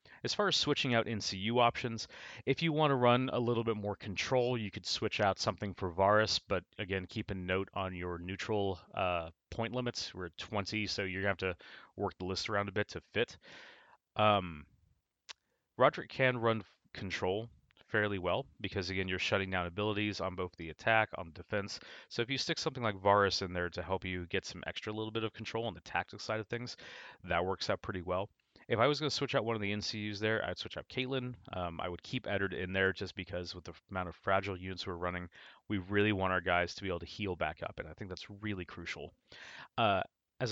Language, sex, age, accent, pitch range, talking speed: English, male, 30-49, American, 95-115 Hz, 225 wpm